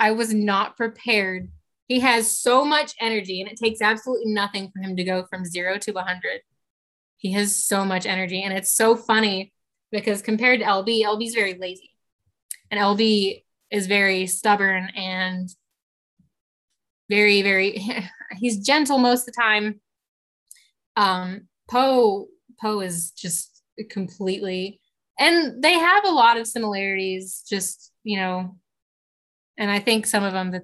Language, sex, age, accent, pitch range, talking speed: English, female, 20-39, American, 190-225 Hz, 150 wpm